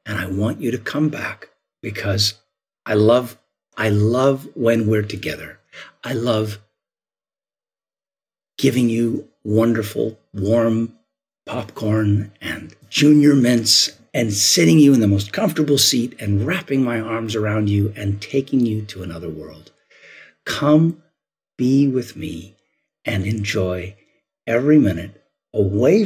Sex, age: male, 50-69